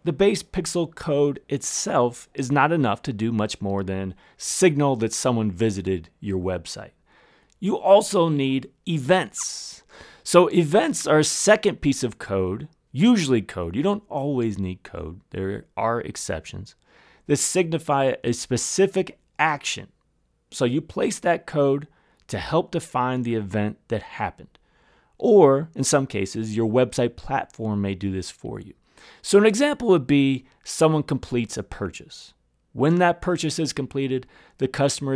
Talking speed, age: 145 wpm, 30-49